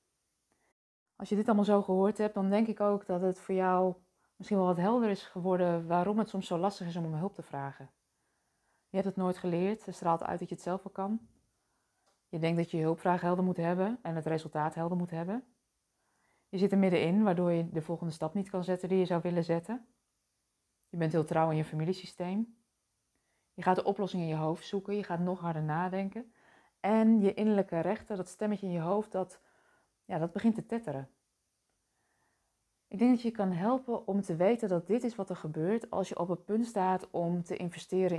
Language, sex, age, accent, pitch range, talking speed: Dutch, female, 20-39, Dutch, 170-200 Hz, 215 wpm